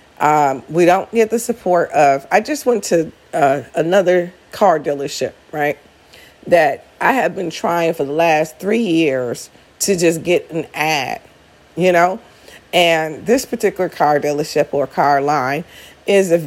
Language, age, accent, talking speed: English, 40-59, American, 155 wpm